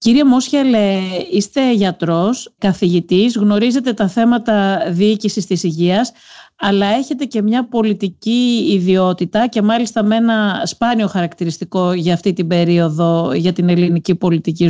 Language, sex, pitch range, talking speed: Greek, female, 175-230 Hz, 125 wpm